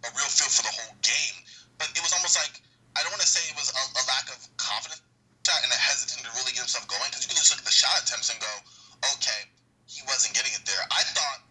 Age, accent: 20-39, American